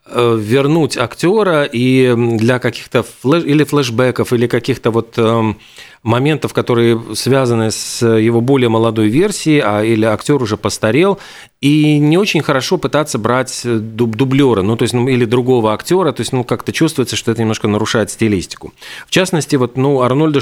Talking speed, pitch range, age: 155 wpm, 115-145 Hz, 40-59